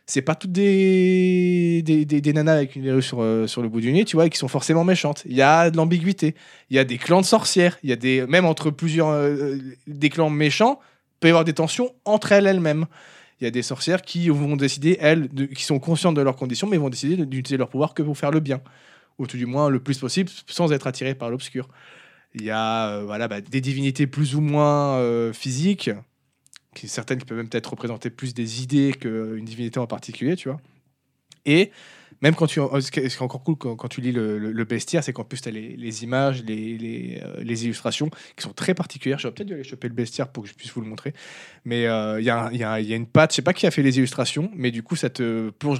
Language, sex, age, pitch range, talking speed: French, male, 20-39, 125-160 Hz, 255 wpm